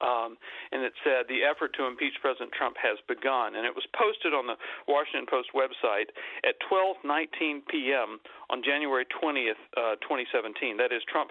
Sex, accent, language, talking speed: male, American, English, 170 wpm